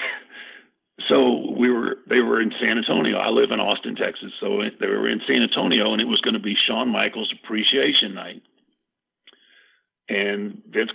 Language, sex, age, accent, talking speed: English, male, 50-69, American, 170 wpm